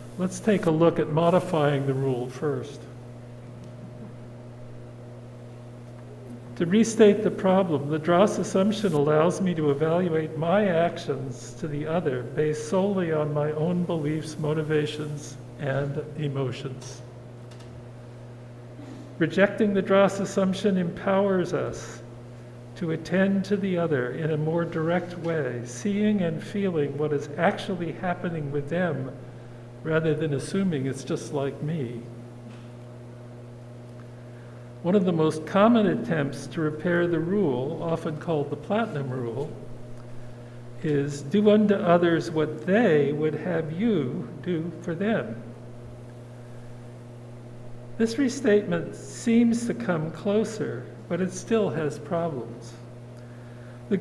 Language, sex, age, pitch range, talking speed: English, male, 50-69, 120-175 Hz, 115 wpm